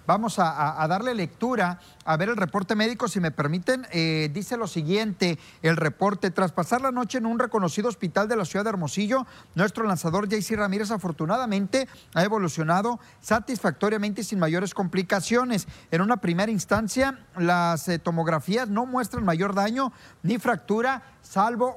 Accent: Mexican